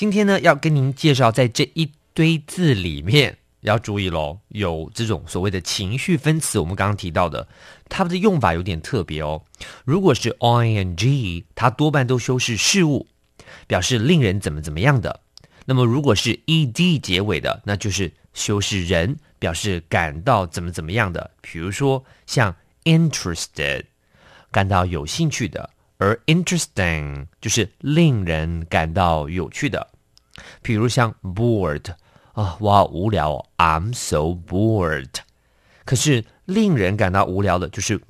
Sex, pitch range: male, 90-135 Hz